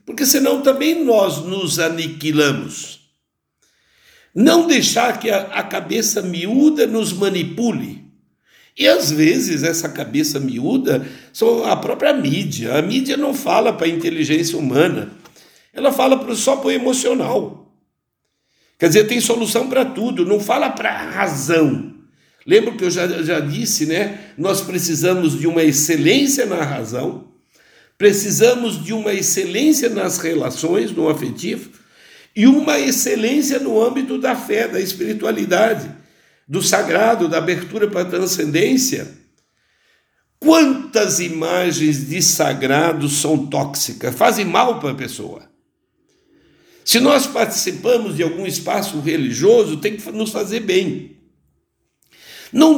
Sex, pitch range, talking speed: male, 165-255 Hz, 125 wpm